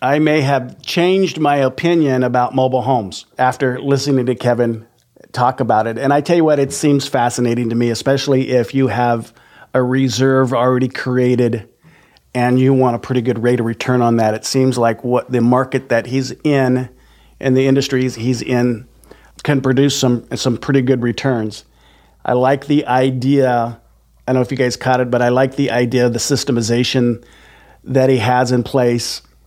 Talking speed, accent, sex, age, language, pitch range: 185 wpm, American, male, 40-59, English, 120-135 Hz